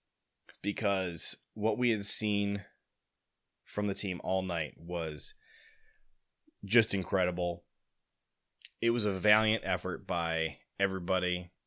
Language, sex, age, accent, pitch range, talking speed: English, male, 20-39, American, 90-110 Hz, 105 wpm